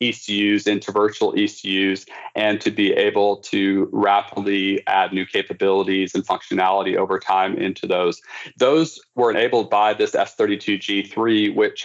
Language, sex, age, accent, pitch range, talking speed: English, male, 40-59, American, 95-115 Hz, 130 wpm